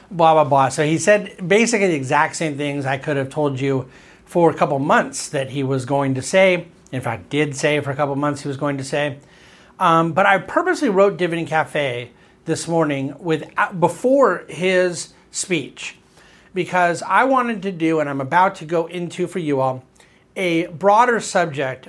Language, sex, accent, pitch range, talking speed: English, male, American, 145-185 Hz, 185 wpm